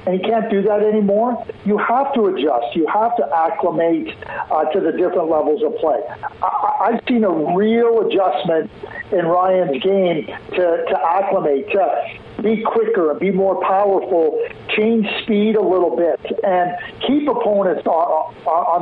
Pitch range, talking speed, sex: 175-215 Hz, 160 wpm, male